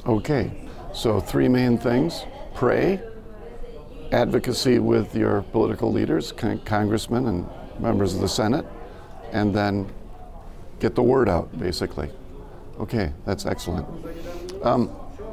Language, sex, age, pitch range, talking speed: English, male, 50-69, 95-115 Hz, 110 wpm